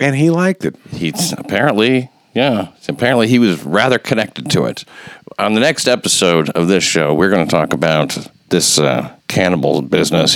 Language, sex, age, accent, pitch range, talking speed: English, male, 50-69, American, 85-120 Hz, 175 wpm